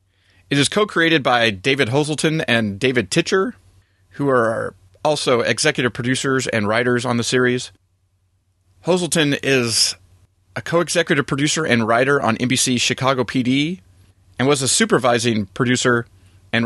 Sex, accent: male, American